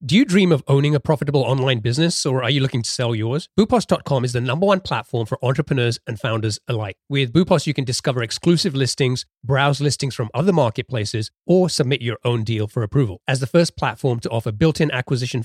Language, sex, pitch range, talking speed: English, male, 120-150 Hz, 210 wpm